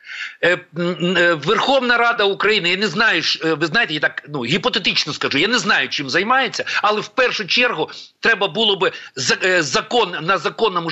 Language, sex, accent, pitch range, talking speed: Ukrainian, male, native, 175-230 Hz, 155 wpm